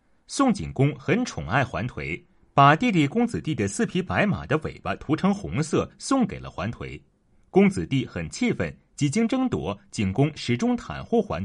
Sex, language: male, Chinese